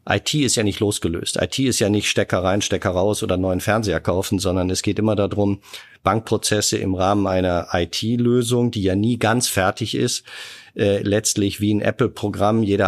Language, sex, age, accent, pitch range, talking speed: German, male, 50-69, German, 95-115 Hz, 180 wpm